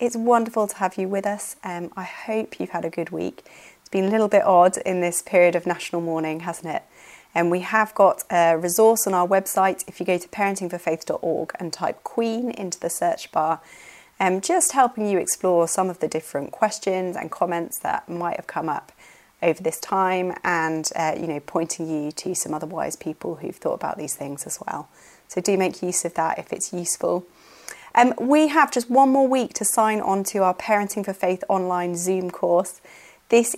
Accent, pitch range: British, 170-215 Hz